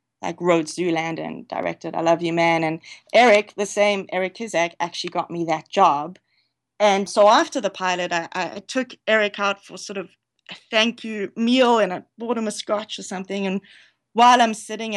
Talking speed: 195 wpm